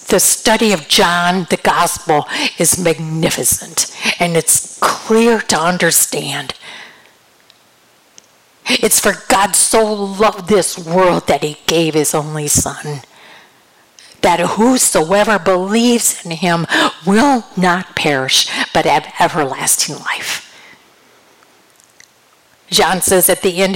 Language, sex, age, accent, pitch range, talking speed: English, female, 50-69, American, 165-210 Hz, 110 wpm